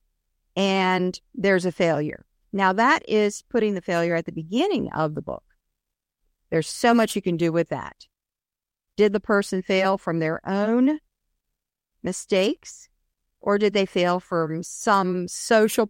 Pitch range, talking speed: 170-240 Hz, 145 wpm